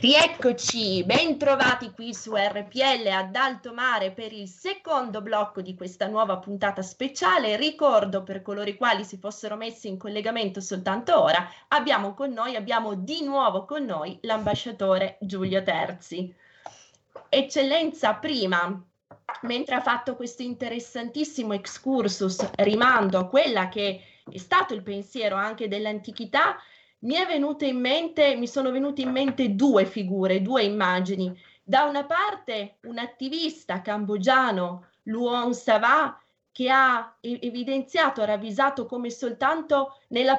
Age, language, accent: 20-39, Italian, native